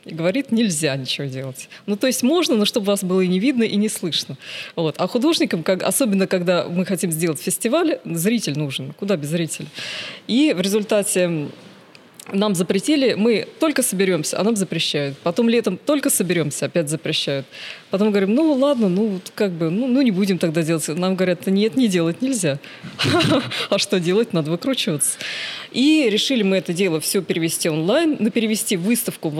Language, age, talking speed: Russian, 20-39, 175 wpm